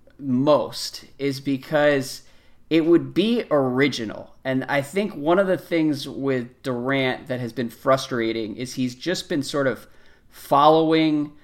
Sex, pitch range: male, 125-160 Hz